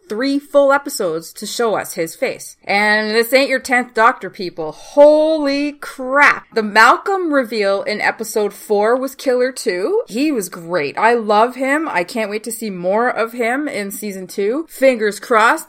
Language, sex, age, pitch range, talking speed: English, female, 20-39, 200-270 Hz, 170 wpm